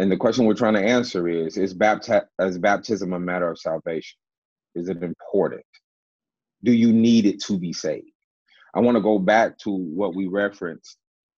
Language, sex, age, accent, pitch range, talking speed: English, male, 30-49, American, 90-110 Hz, 175 wpm